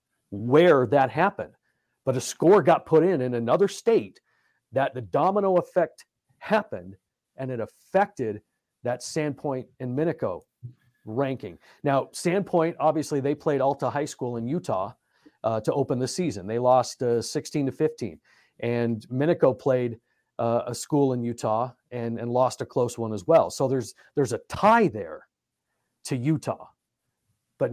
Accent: American